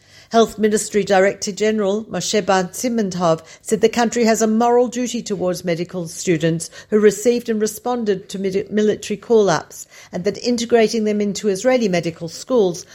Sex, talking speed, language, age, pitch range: female, 140 wpm, Hebrew, 50-69, 170-215 Hz